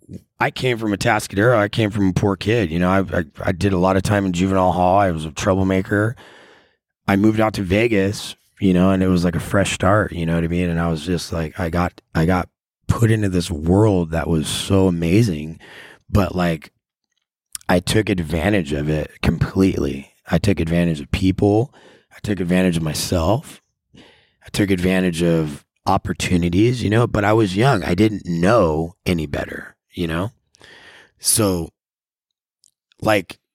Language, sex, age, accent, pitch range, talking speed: English, male, 30-49, American, 85-100 Hz, 180 wpm